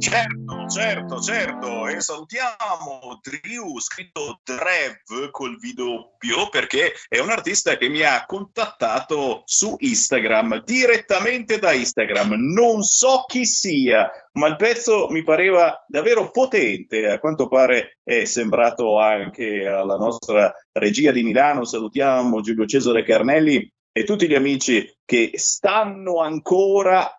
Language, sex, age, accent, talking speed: Italian, male, 50-69, native, 125 wpm